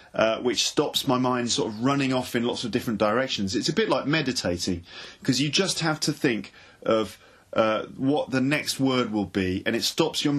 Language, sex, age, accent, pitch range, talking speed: English, male, 30-49, British, 110-140 Hz, 215 wpm